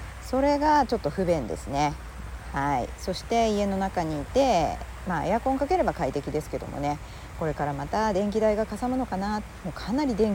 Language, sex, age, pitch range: Japanese, female, 40-59, 150-230 Hz